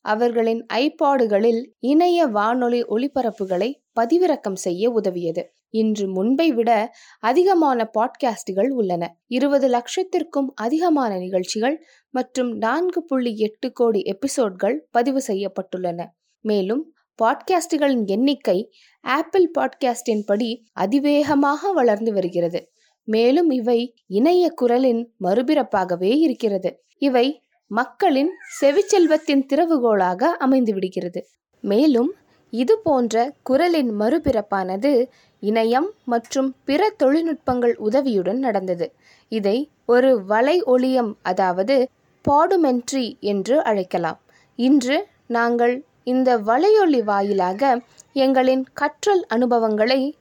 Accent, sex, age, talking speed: Indian, female, 20-39, 70 wpm